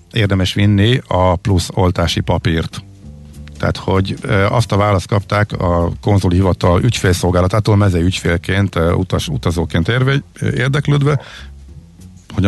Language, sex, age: Hungarian, male, 50-69